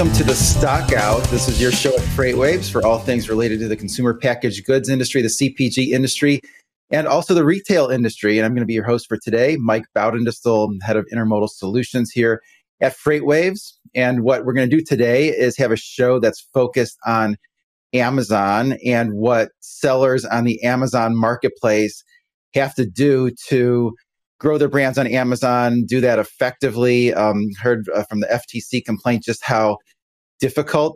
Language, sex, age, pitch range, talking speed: English, male, 30-49, 105-125 Hz, 175 wpm